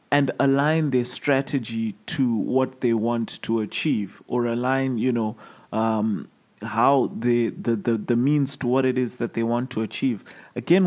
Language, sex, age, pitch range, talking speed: English, male, 30-49, 120-155 Hz, 170 wpm